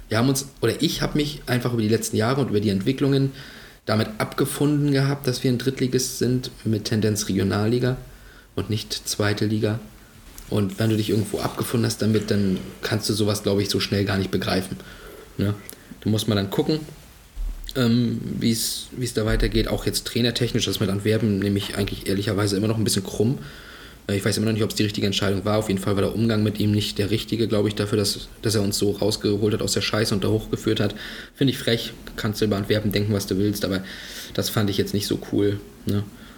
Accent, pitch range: German, 105-115 Hz